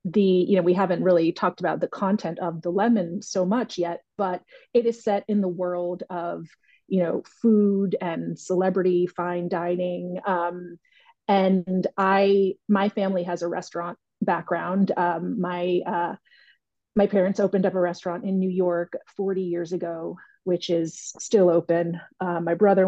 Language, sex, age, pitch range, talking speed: English, female, 30-49, 175-195 Hz, 165 wpm